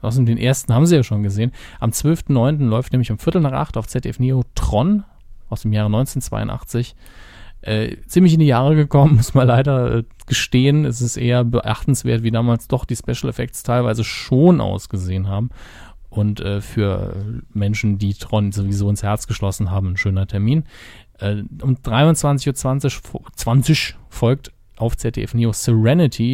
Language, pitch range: German, 105-125 Hz